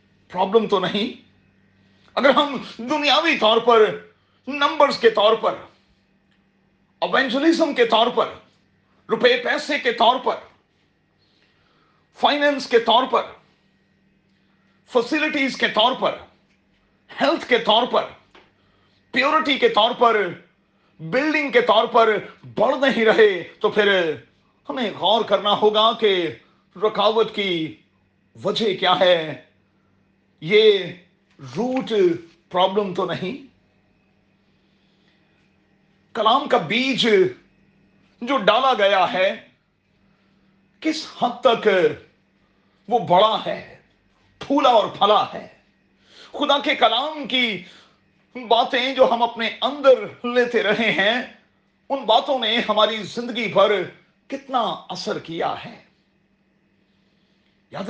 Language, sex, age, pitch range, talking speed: Urdu, male, 40-59, 195-255 Hz, 105 wpm